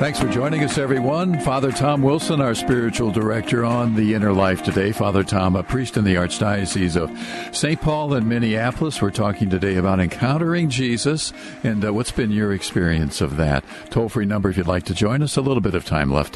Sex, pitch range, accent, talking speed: male, 90-120 Hz, American, 210 wpm